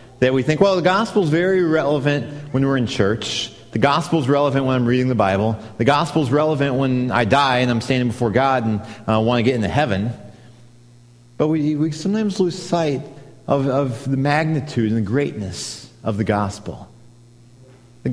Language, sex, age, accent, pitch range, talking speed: English, male, 40-59, American, 115-145 Hz, 195 wpm